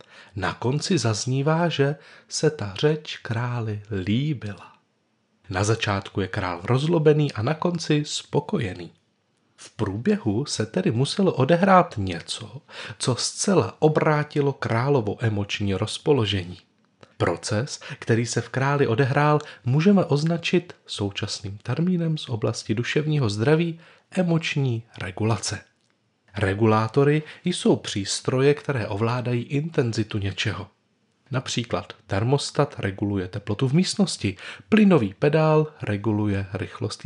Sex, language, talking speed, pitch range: male, Czech, 105 wpm, 105-155 Hz